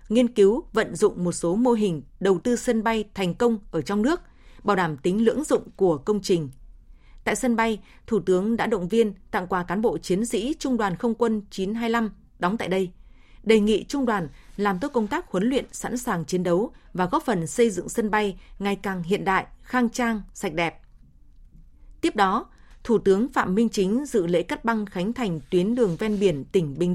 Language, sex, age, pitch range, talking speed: Vietnamese, female, 20-39, 185-235 Hz, 210 wpm